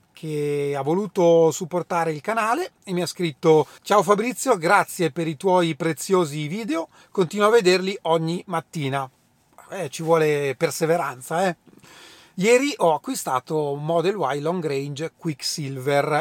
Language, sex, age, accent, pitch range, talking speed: Italian, male, 30-49, native, 150-185 Hz, 135 wpm